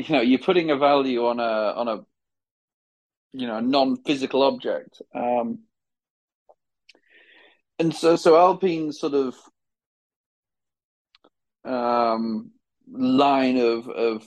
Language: English